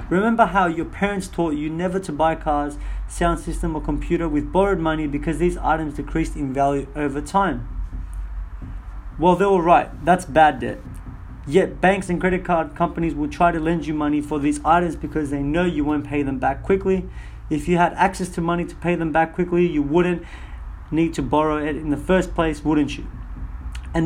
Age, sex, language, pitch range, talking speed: 30-49, male, English, 135-175 Hz, 200 wpm